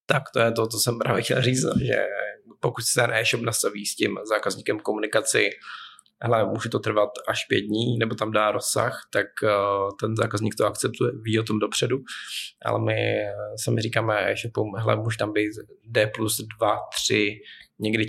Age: 20-39